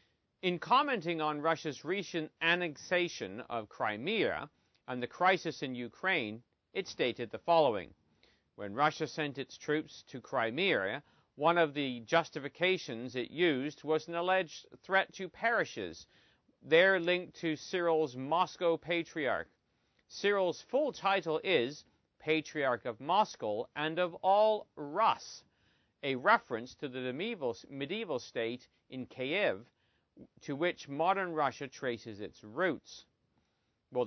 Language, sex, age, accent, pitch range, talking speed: English, male, 40-59, American, 130-180 Hz, 120 wpm